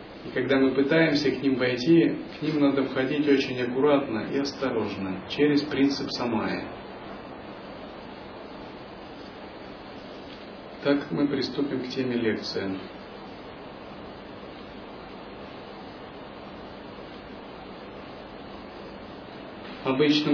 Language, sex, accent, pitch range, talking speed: Russian, male, native, 125-150 Hz, 75 wpm